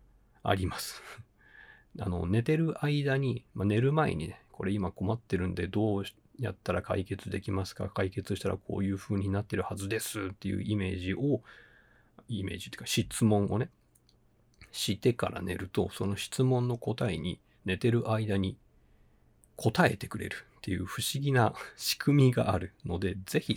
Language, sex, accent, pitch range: Japanese, male, native, 95-120 Hz